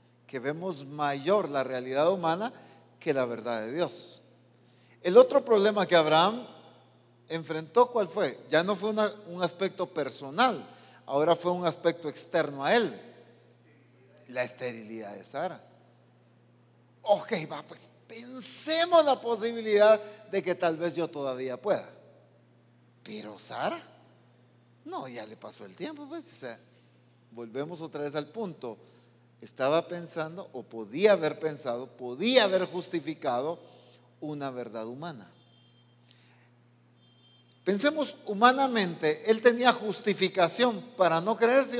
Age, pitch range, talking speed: 50-69, 120-200 Hz, 120 wpm